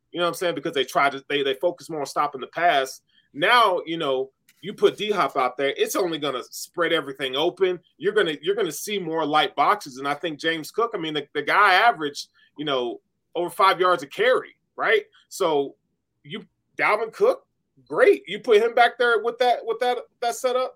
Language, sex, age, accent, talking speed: English, male, 30-49, American, 225 wpm